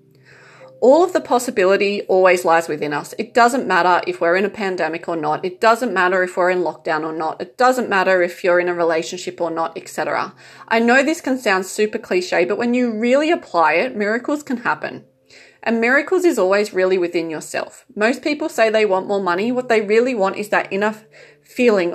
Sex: female